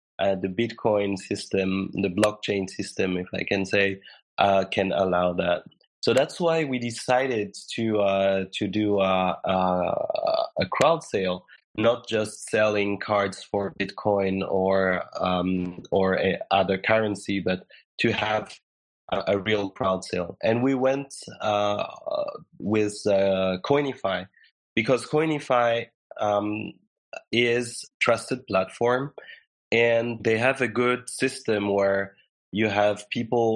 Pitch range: 100-115 Hz